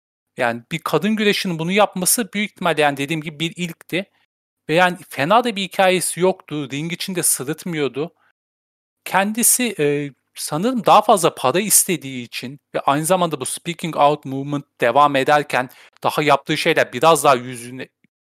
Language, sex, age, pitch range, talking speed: Turkish, male, 40-59, 130-185 Hz, 150 wpm